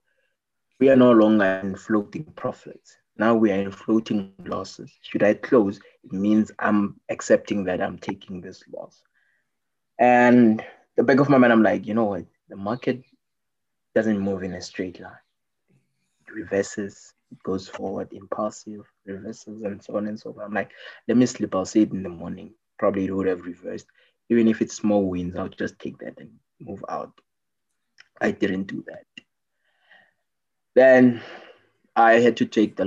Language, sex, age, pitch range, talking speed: English, male, 20-39, 100-115 Hz, 175 wpm